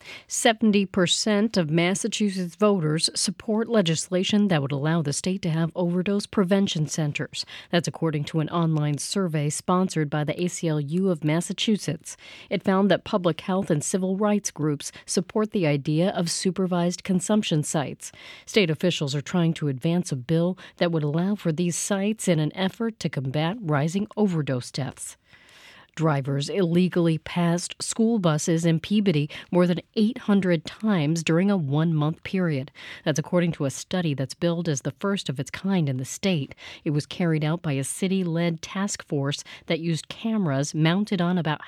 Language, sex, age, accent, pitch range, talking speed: English, female, 40-59, American, 155-195 Hz, 165 wpm